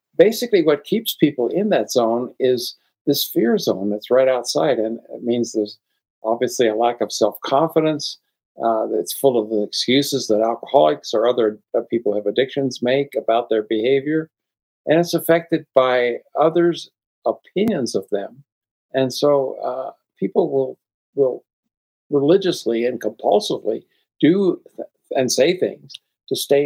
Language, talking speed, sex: English, 140 wpm, male